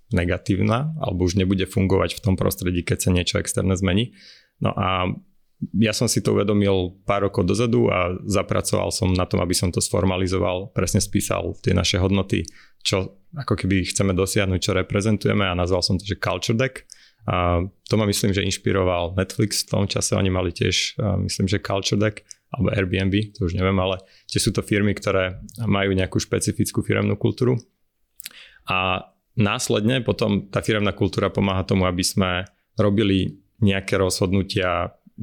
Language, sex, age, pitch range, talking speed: Slovak, male, 30-49, 95-105 Hz, 165 wpm